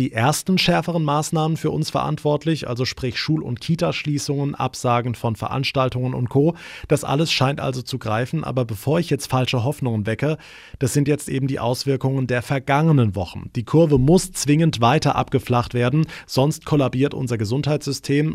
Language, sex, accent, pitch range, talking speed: German, male, German, 120-155 Hz, 165 wpm